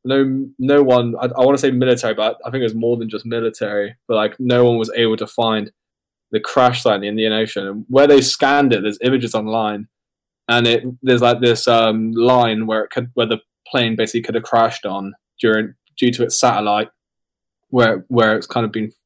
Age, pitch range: 10-29, 110-130 Hz